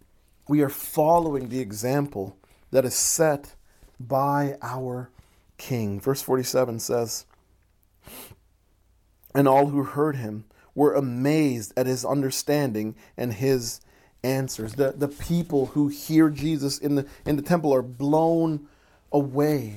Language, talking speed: English, 120 wpm